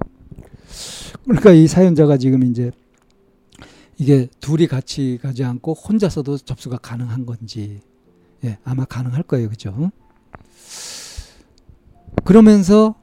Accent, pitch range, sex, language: native, 120-160 Hz, male, Korean